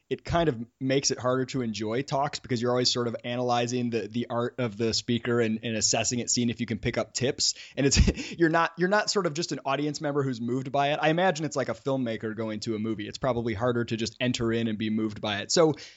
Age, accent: 20-39, American